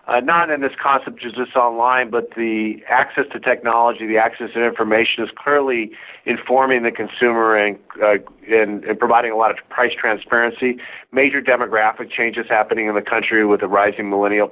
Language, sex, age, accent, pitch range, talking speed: English, male, 50-69, American, 110-130 Hz, 180 wpm